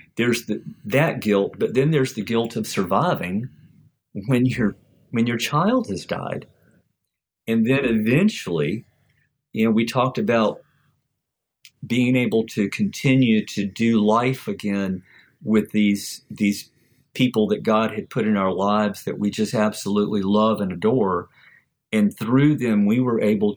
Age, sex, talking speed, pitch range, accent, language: 50-69, male, 150 wpm, 105-130 Hz, American, English